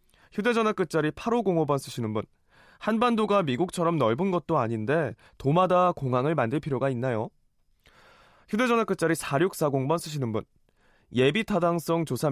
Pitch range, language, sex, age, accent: 130-185 Hz, Korean, male, 20-39, native